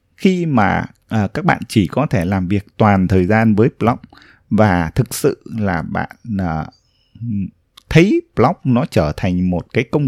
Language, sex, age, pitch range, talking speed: Vietnamese, male, 20-39, 100-130 Hz, 160 wpm